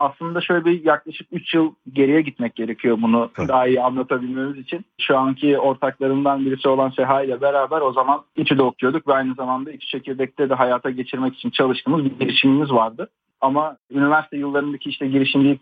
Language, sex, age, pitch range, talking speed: Turkish, male, 40-59, 135-175 Hz, 170 wpm